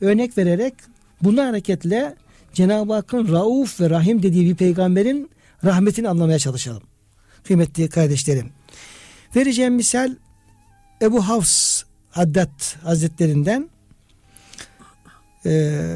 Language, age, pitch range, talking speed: Turkish, 60-79, 155-215 Hz, 90 wpm